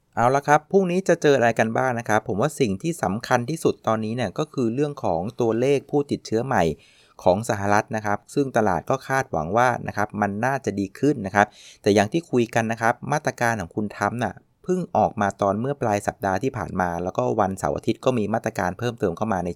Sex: male